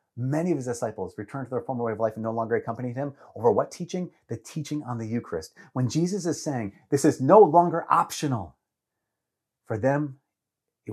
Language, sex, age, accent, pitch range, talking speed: English, male, 30-49, American, 110-165 Hz, 200 wpm